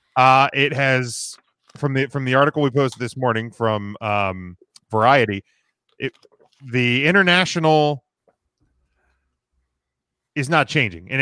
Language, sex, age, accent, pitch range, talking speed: English, male, 30-49, American, 115-150 Hz, 120 wpm